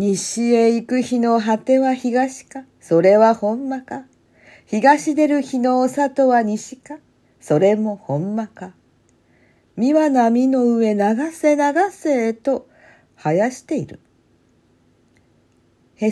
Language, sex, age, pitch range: Japanese, female, 50-69, 165-240 Hz